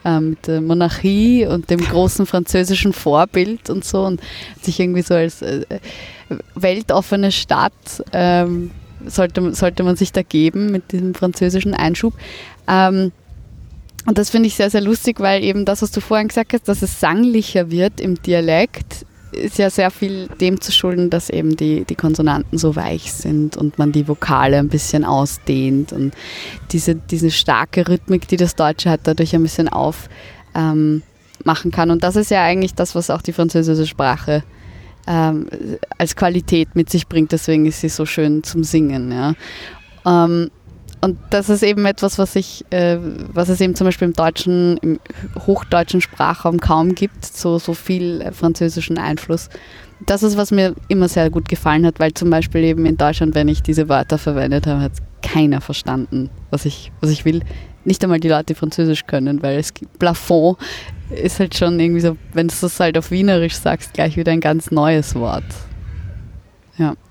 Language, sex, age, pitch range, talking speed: German, female, 20-39, 155-185 Hz, 175 wpm